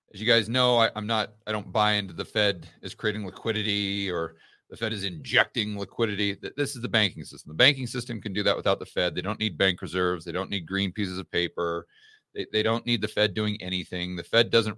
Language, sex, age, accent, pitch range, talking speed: English, male, 40-59, American, 95-115 Hz, 240 wpm